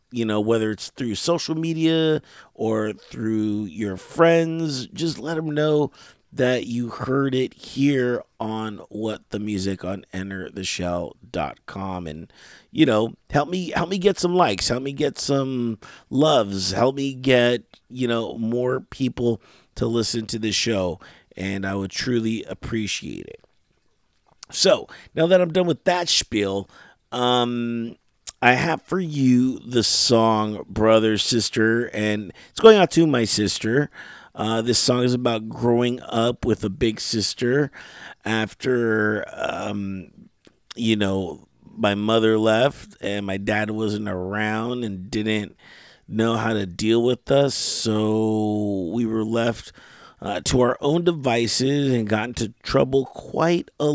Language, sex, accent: English, male, American